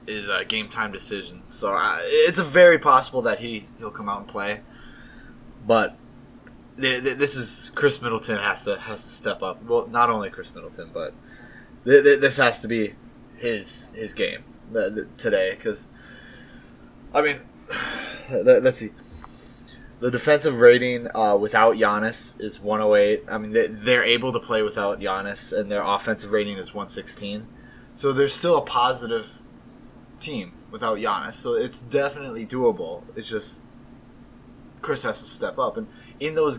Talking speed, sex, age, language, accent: 160 wpm, male, 20-39, English, American